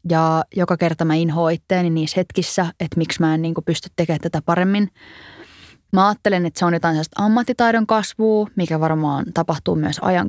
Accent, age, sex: native, 20-39, female